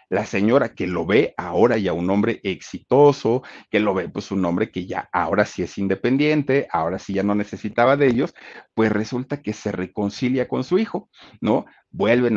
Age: 50-69